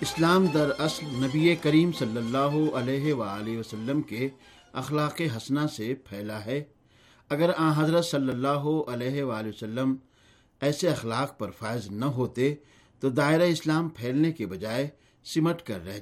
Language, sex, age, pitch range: Urdu, male, 60-79, 120-155 Hz